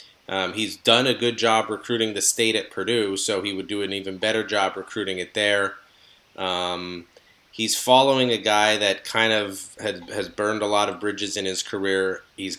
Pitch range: 95-115 Hz